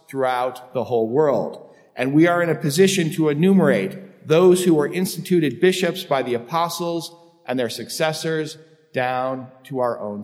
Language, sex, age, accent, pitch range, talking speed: English, male, 40-59, American, 135-175 Hz, 160 wpm